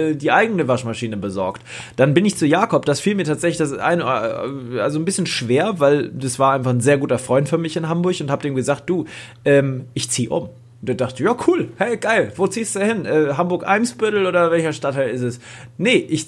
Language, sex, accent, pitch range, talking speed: German, male, German, 125-180 Hz, 220 wpm